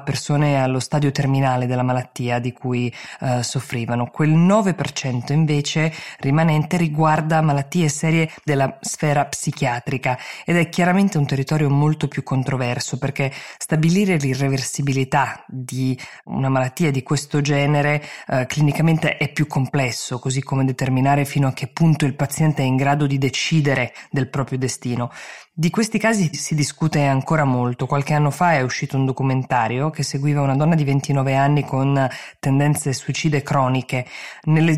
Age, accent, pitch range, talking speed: 20-39, native, 130-155 Hz, 145 wpm